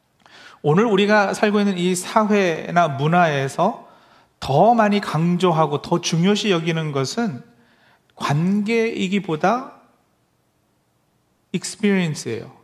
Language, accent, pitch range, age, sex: Korean, native, 150-205 Hz, 40-59, male